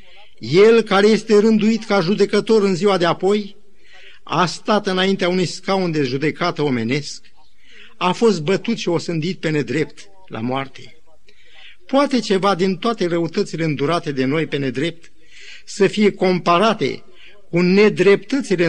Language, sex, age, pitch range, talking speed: Romanian, male, 50-69, 150-205 Hz, 140 wpm